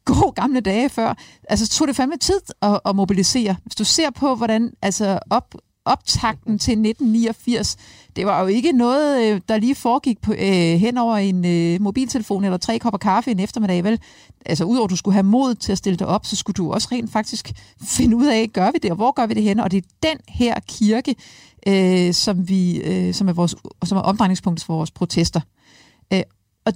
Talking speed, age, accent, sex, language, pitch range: 185 wpm, 50-69, native, female, Danish, 180-230 Hz